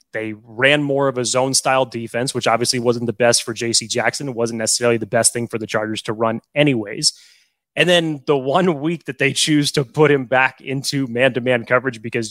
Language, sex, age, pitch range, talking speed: English, male, 20-39, 120-150 Hz, 210 wpm